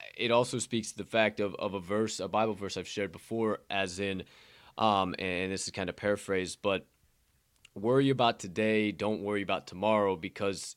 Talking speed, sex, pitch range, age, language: 190 wpm, male, 105-140 Hz, 20-39, English